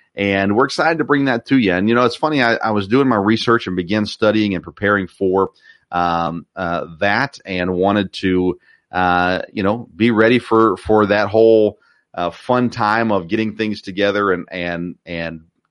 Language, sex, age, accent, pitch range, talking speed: English, male, 40-59, American, 90-115 Hz, 190 wpm